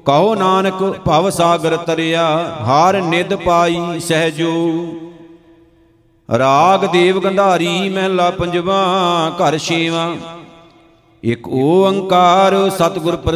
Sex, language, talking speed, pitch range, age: male, Punjabi, 90 wpm, 160-185 Hz, 50-69